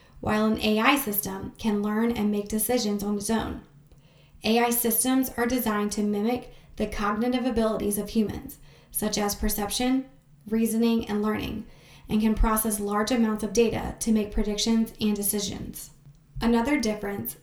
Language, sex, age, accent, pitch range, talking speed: English, female, 20-39, American, 205-230 Hz, 150 wpm